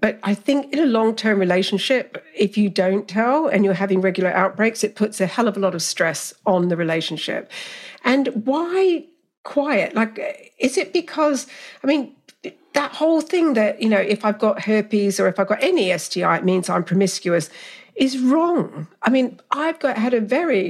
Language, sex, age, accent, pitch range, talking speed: English, female, 50-69, British, 195-280 Hz, 190 wpm